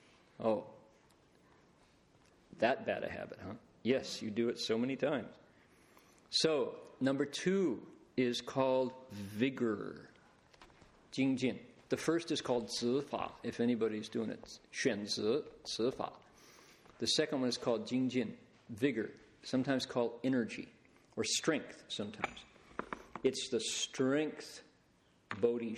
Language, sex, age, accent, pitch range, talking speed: English, male, 50-69, American, 115-135 Hz, 120 wpm